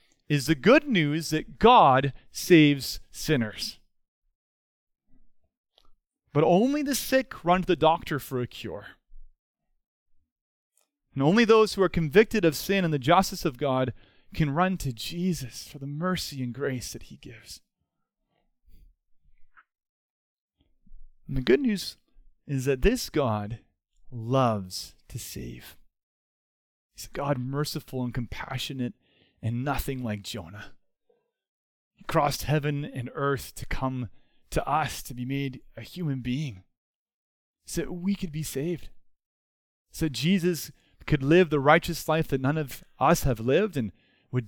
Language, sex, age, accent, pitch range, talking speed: English, male, 30-49, American, 125-185 Hz, 135 wpm